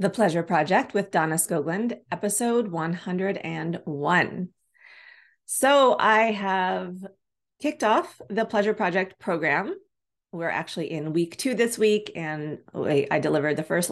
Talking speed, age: 125 wpm, 30-49